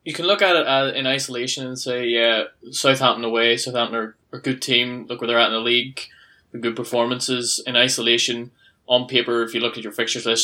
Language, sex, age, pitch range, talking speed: English, male, 20-39, 115-130 Hz, 215 wpm